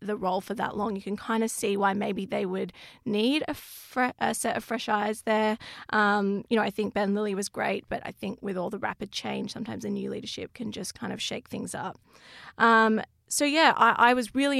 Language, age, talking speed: English, 20-39, 235 wpm